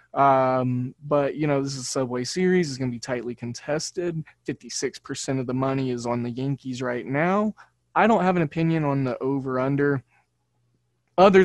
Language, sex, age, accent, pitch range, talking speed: English, male, 20-39, American, 125-150 Hz, 185 wpm